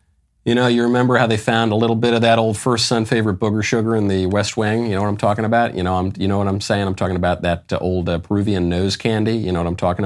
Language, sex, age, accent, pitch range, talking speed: English, male, 40-59, American, 100-140 Hz, 300 wpm